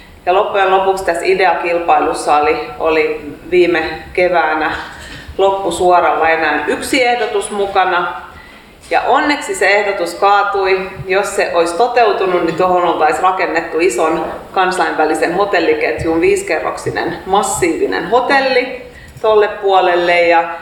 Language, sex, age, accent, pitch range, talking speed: Finnish, female, 30-49, native, 165-220 Hz, 100 wpm